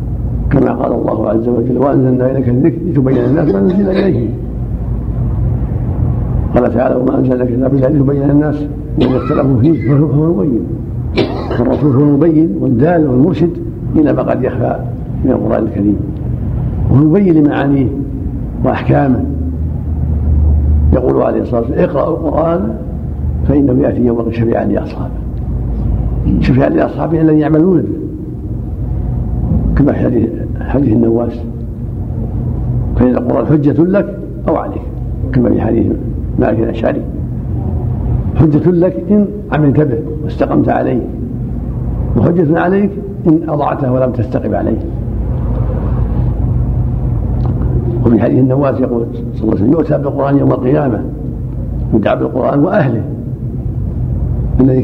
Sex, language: male, Arabic